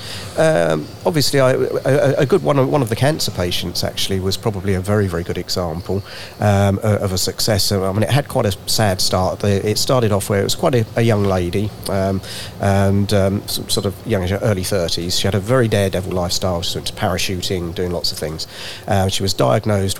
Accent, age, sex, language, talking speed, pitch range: British, 40-59, male, English, 200 wpm, 95-110 Hz